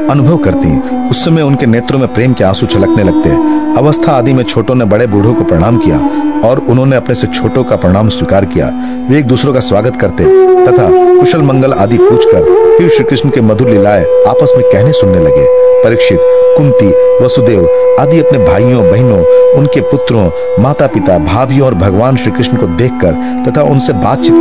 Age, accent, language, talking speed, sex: 50-69, native, Hindi, 180 wpm, male